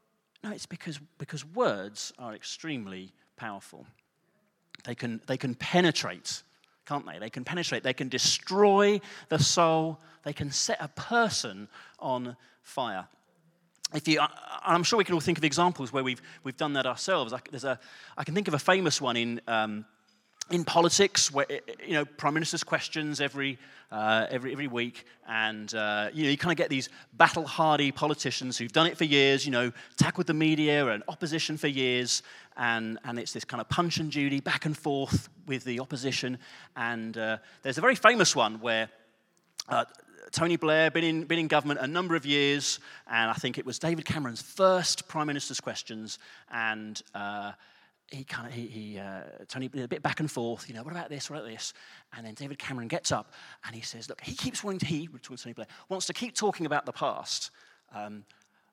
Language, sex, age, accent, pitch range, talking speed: English, male, 30-49, British, 120-165 Hz, 195 wpm